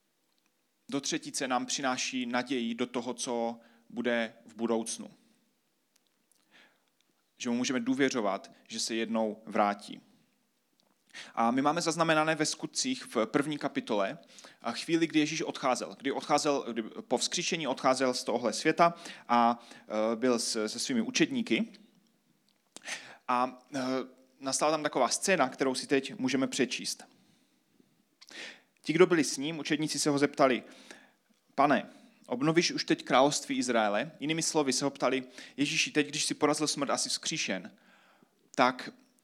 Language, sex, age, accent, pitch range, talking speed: Czech, male, 30-49, native, 125-165 Hz, 130 wpm